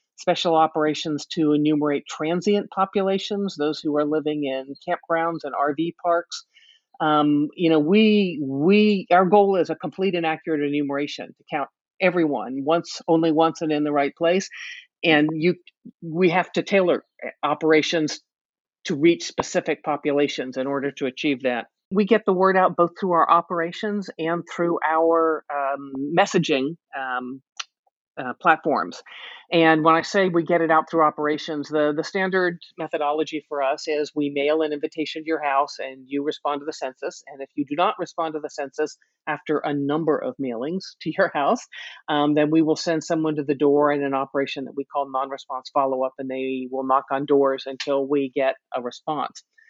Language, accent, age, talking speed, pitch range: English, American, 50-69, 175 wpm, 145-175 Hz